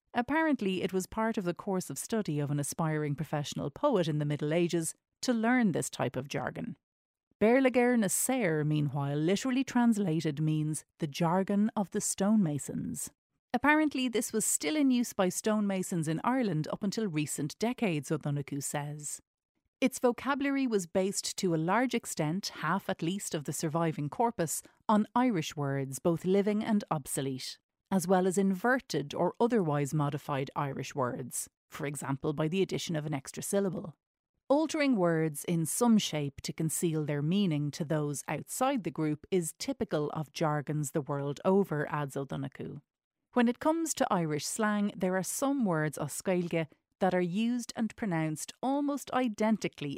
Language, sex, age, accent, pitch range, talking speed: English, female, 30-49, Irish, 150-220 Hz, 160 wpm